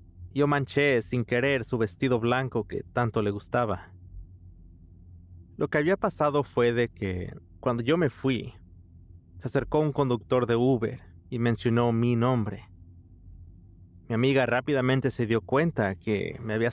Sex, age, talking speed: male, 30-49, 145 wpm